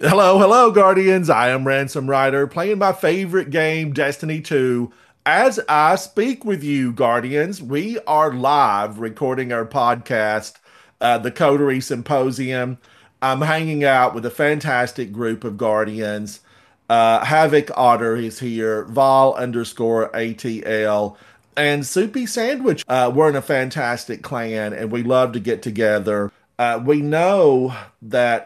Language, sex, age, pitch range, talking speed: English, male, 40-59, 110-155 Hz, 135 wpm